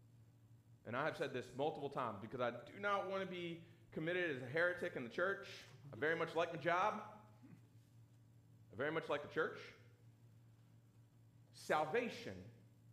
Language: English